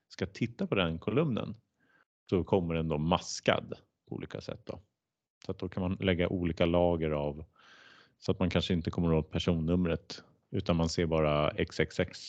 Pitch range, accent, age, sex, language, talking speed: 85-110 Hz, Norwegian, 30-49, male, Swedish, 170 wpm